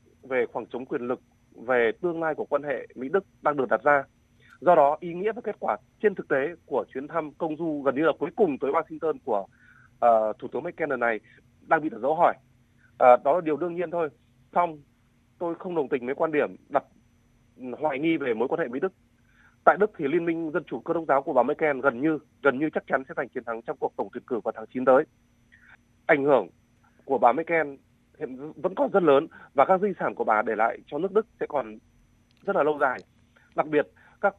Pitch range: 120-175 Hz